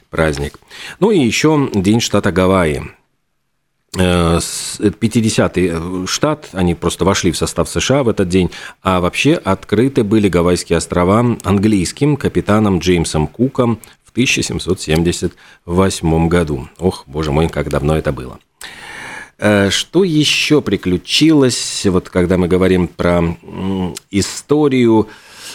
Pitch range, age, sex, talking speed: 85-105 Hz, 40-59, male, 110 wpm